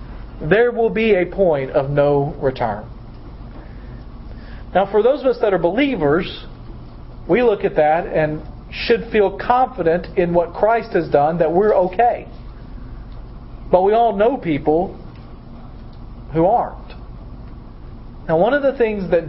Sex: male